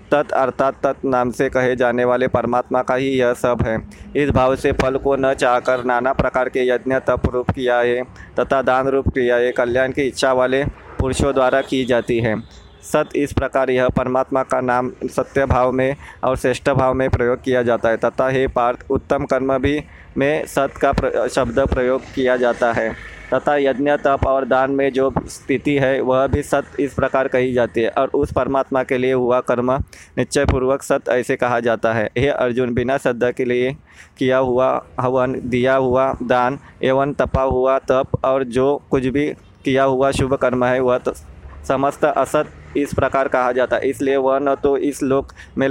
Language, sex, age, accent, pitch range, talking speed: Hindi, male, 20-39, native, 125-135 Hz, 195 wpm